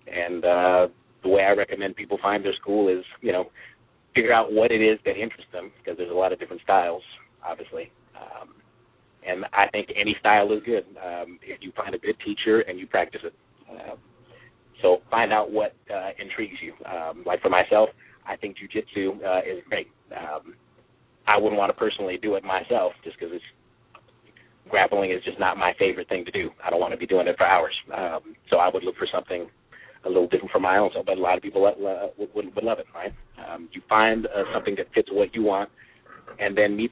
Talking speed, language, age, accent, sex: 215 wpm, English, 30-49, American, male